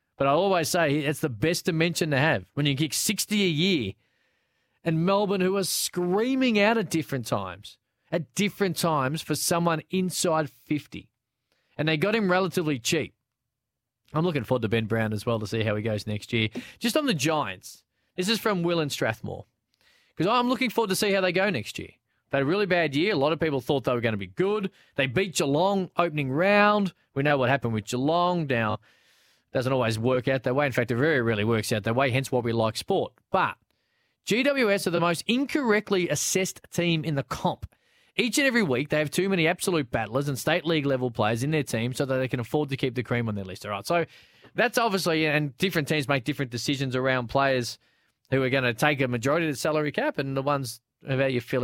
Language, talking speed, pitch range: English, 225 wpm, 120-180 Hz